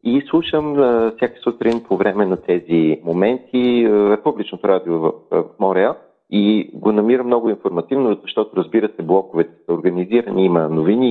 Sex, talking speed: male, 135 wpm